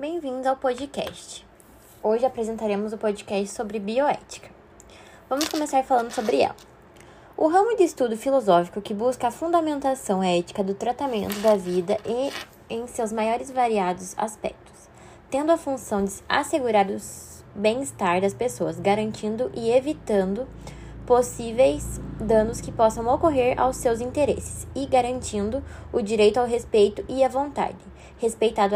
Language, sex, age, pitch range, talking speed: Portuguese, female, 10-29, 220-265 Hz, 135 wpm